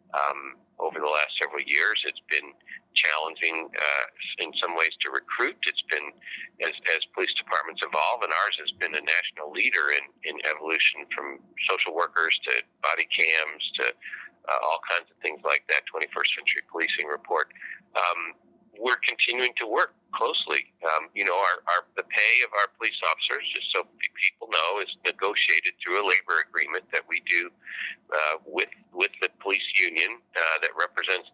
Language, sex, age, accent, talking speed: English, male, 40-59, American, 170 wpm